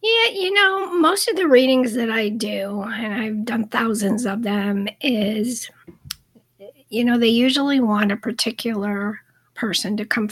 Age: 60-79